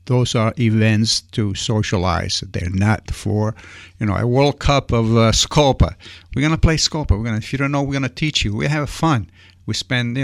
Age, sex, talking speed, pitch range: 60-79, male, 210 wpm, 100-125 Hz